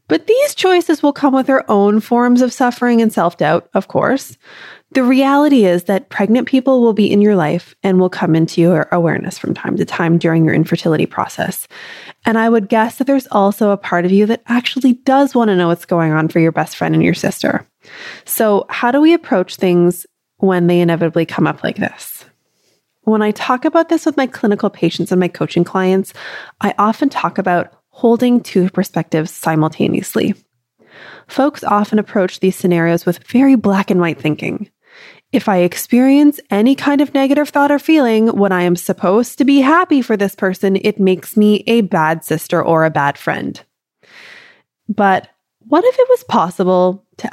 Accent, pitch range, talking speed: American, 175-255 Hz, 190 wpm